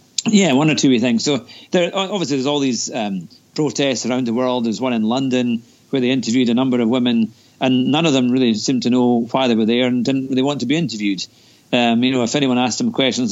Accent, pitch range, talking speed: British, 120-145 Hz, 250 wpm